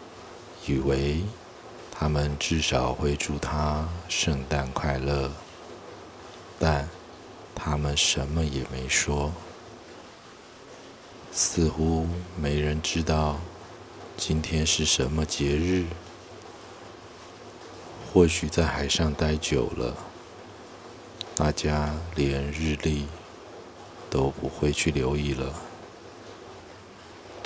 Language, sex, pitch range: Chinese, male, 70-90 Hz